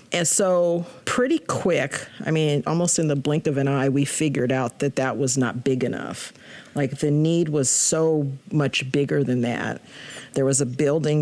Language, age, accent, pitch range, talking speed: English, 50-69, American, 140-170 Hz, 185 wpm